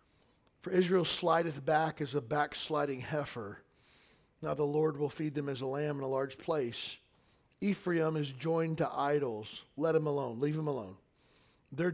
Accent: American